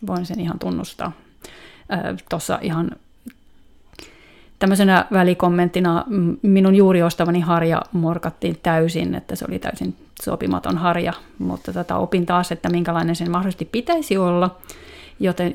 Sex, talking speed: female, 125 wpm